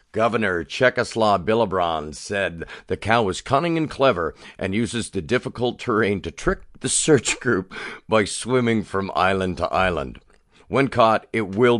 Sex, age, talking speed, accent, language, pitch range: male, 50-69, 155 wpm, American, English, 80-120 Hz